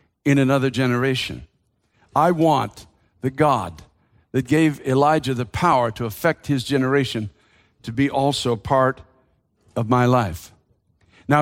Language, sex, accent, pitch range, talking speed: English, male, American, 130-195 Hz, 125 wpm